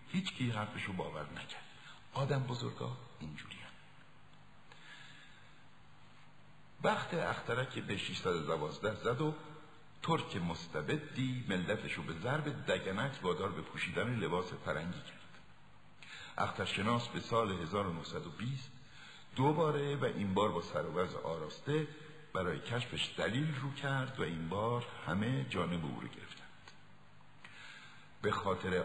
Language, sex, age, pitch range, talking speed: Persian, male, 60-79, 105-155 Hz, 110 wpm